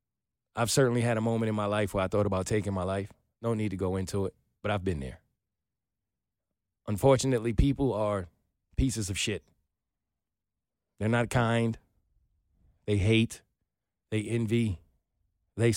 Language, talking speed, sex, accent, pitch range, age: English, 150 wpm, male, American, 105-130 Hz, 30-49